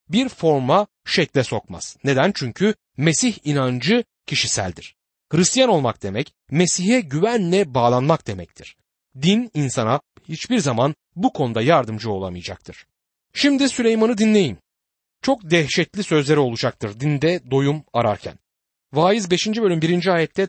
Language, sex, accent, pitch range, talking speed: Turkish, male, native, 130-195 Hz, 115 wpm